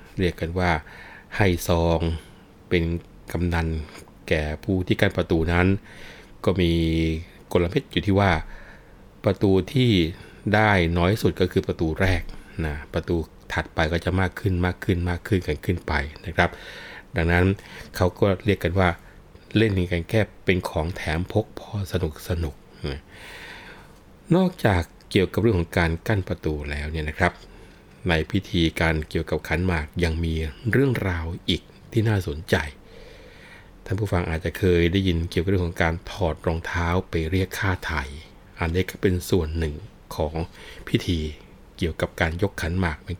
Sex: male